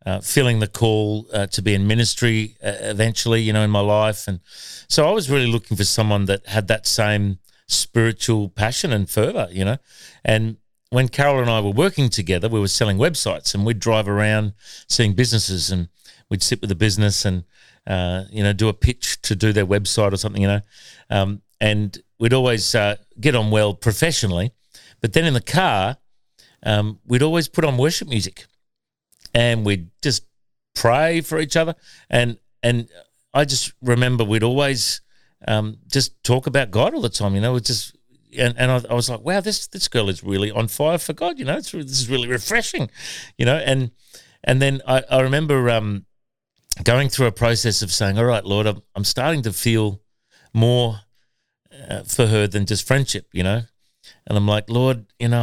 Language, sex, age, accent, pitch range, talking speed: English, male, 40-59, Australian, 105-125 Hz, 195 wpm